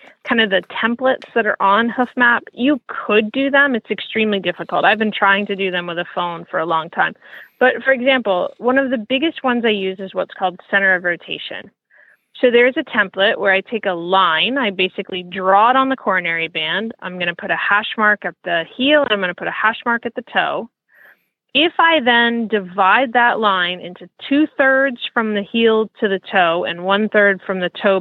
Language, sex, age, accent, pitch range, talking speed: English, female, 30-49, American, 185-235 Hz, 215 wpm